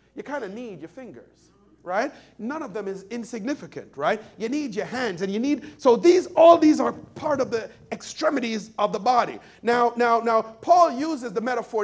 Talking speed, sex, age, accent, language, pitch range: 200 wpm, male, 40-59, American, English, 195-270 Hz